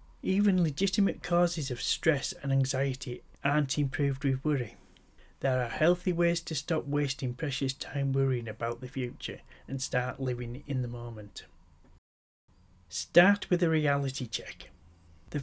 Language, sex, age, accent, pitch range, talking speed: English, male, 30-49, British, 125-160 Hz, 140 wpm